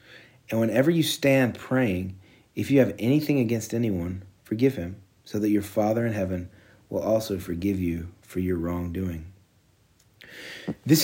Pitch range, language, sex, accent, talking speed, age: 100-125 Hz, English, male, American, 145 wpm, 30-49